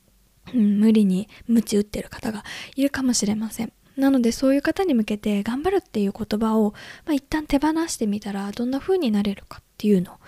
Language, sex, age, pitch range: Japanese, female, 20-39, 205-270 Hz